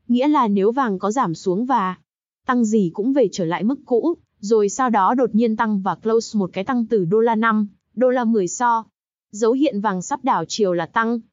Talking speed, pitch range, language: 230 wpm, 200-250 Hz, Vietnamese